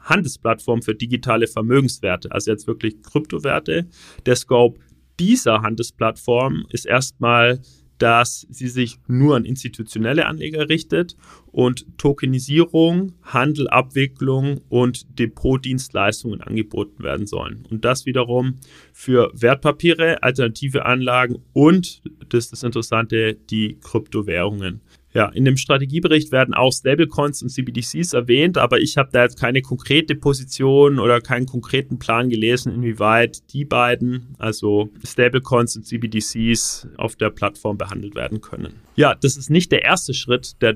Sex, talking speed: male, 130 wpm